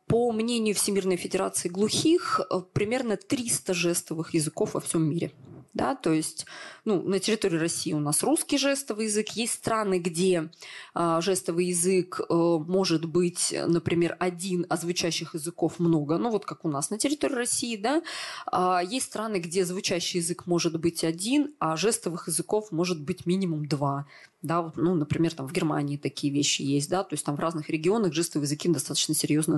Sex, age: female, 20-39